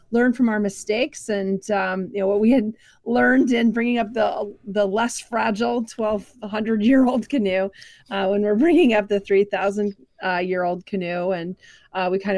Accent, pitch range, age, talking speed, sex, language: American, 195-225 Hz, 30-49, 165 wpm, female, English